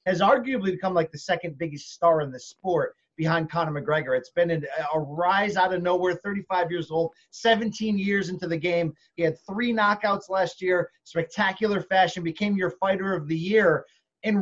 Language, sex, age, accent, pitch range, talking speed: English, male, 30-49, American, 175-225 Hz, 185 wpm